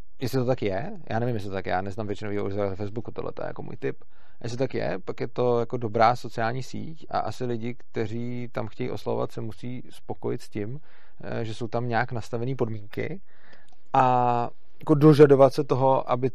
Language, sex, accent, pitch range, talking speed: Czech, male, native, 115-130 Hz, 205 wpm